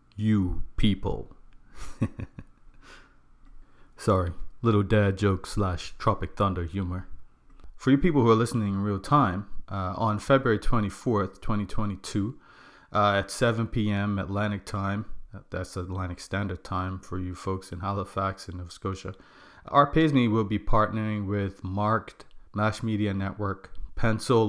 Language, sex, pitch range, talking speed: English, male, 95-110 Hz, 125 wpm